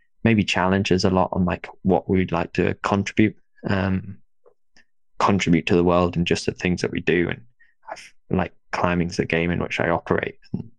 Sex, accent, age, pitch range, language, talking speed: male, British, 10-29, 90-105 Hz, English, 185 wpm